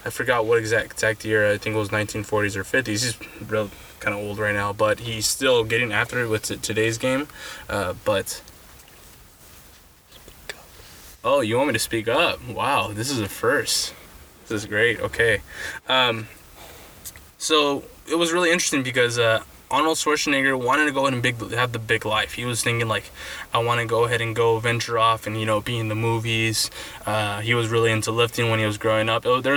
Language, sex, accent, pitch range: English, male, American, 110-130 Hz